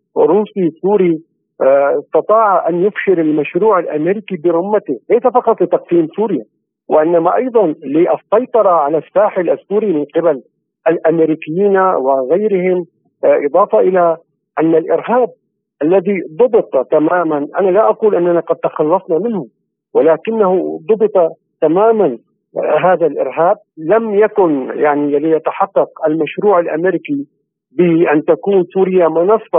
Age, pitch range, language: 50-69, 160-205 Hz, Arabic